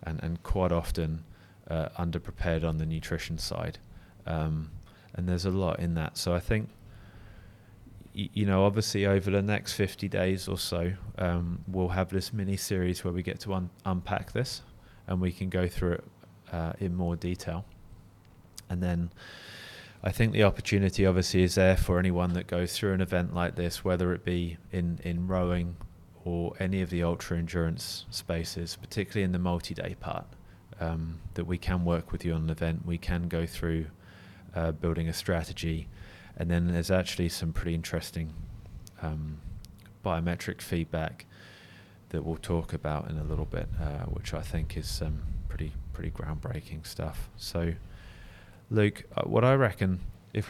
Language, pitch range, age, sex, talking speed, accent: English, 85-100 Hz, 30-49, male, 170 wpm, British